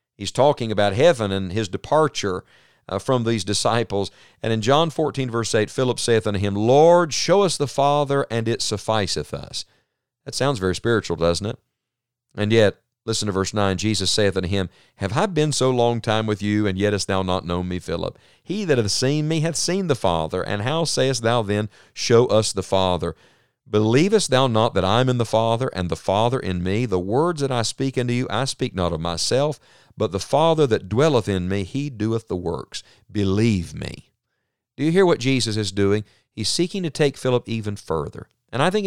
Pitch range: 100-135 Hz